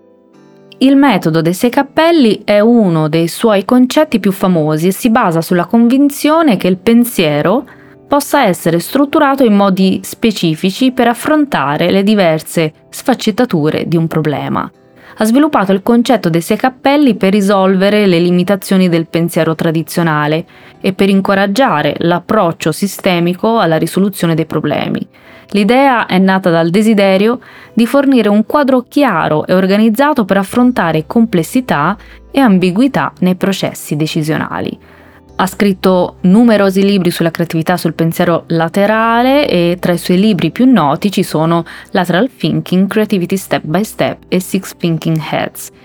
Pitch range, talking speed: 165-235 Hz, 135 wpm